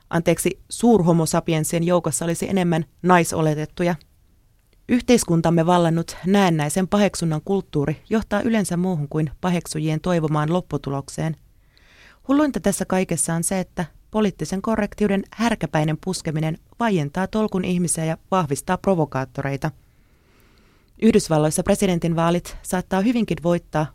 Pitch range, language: 155-195 Hz, Finnish